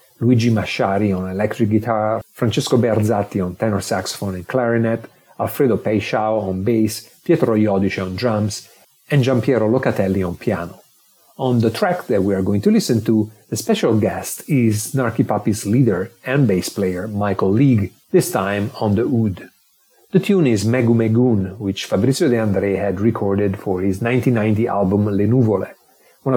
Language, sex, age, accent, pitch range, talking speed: English, male, 40-59, Italian, 100-125 Hz, 155 wpm